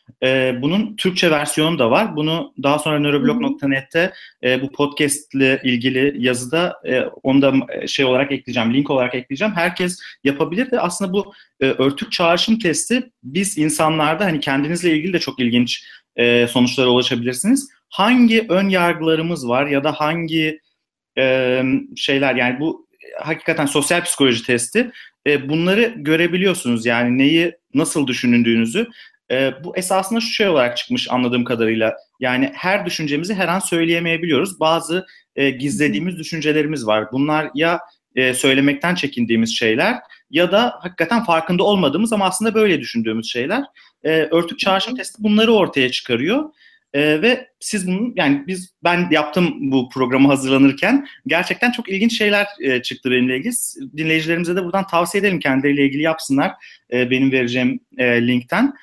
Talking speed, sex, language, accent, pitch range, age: 145 wpm, male, Turkish, native, 135-195 Hz, 40-59